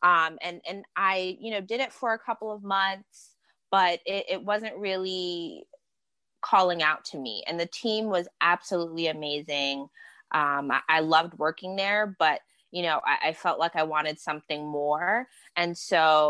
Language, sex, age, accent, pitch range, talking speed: English, female, 20-39, American, 155-185 Hz, 175 wpm